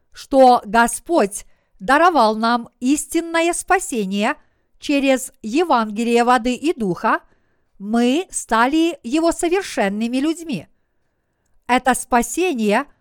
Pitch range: 230-300 Hz